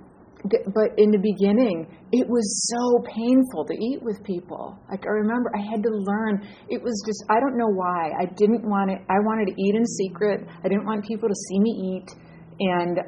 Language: English